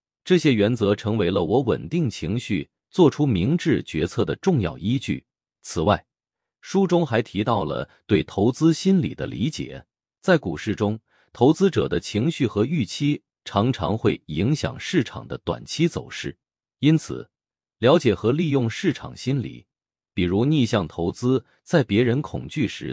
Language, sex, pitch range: Chinese, male, 105-155 Hz